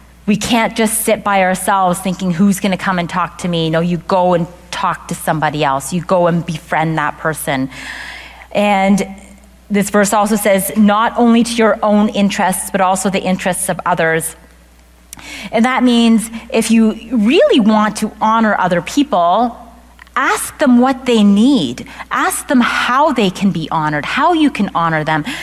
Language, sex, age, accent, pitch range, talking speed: English, female, 30-49, American, 180-245 Hz, 175 wpm